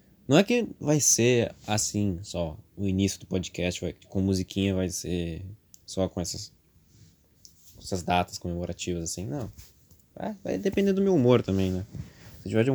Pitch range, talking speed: 90-120 Hz, 160 wpm